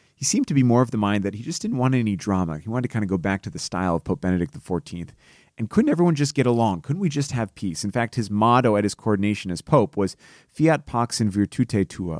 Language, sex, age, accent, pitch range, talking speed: English, male, 30-49, American, 90-115 Hz, 275 wpm